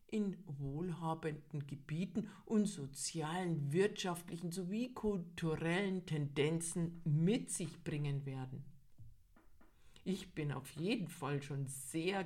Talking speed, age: 100 wpm, 50-69